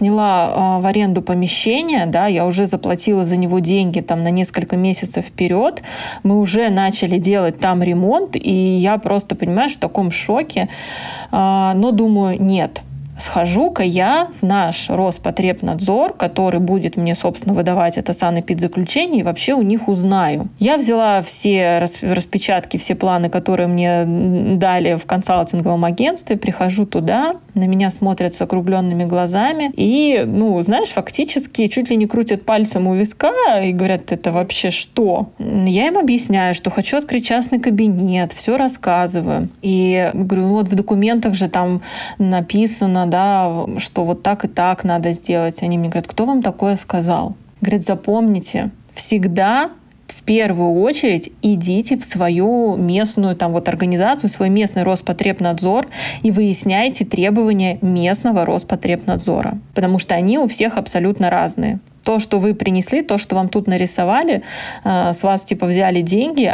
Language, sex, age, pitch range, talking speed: Russian, female, 20-39, 180-215 Hz, 145 wpm